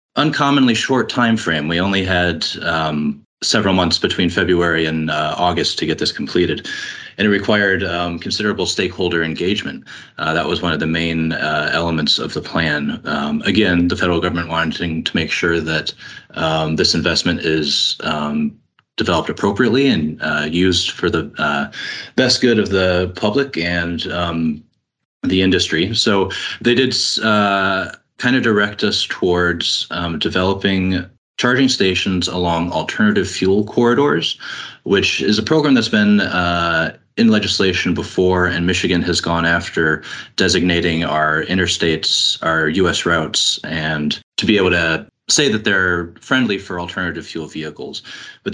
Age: 30-49